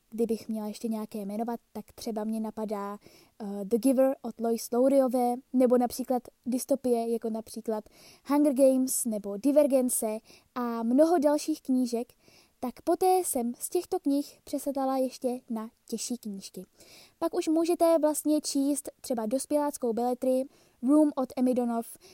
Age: 20-39